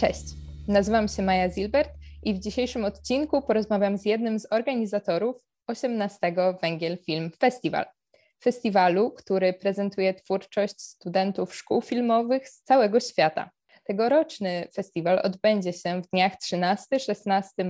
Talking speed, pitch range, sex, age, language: 120 wpm, 180-220 Hz, female, 20-39, Polish